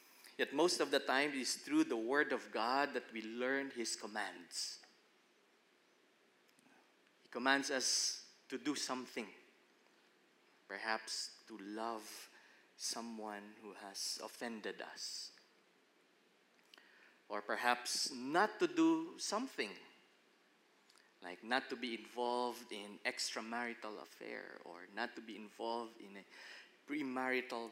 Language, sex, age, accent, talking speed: English, male, 20-39, Filipino, 115 wpm